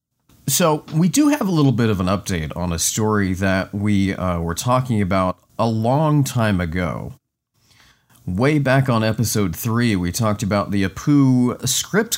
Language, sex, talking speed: English, male, 170 wpm